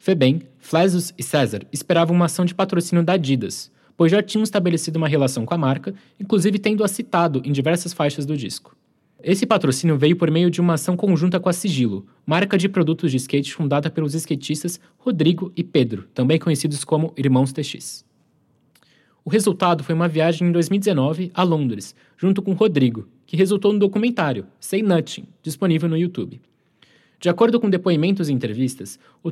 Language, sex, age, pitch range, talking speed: Portuguese, male, 20-39, 140-190 Hz, 170 wpm